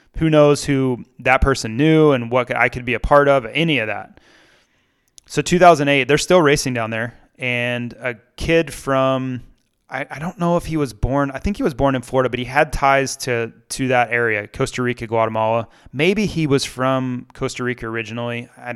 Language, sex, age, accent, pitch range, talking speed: English, male, 20-39, American, 120-145 Hz, 200 wpm